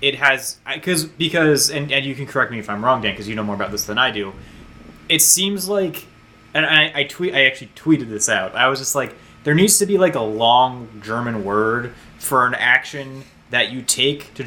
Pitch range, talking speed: 110-140 Hz, 230 wpm